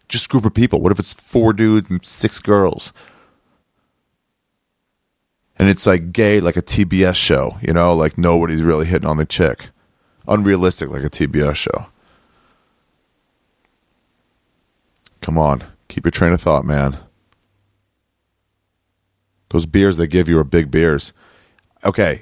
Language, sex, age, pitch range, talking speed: English, male, 40-59, 85-115 Hz, 140 wpm